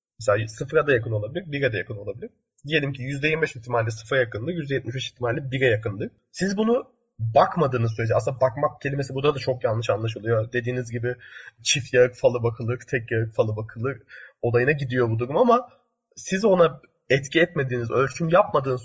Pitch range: 115-150 Hz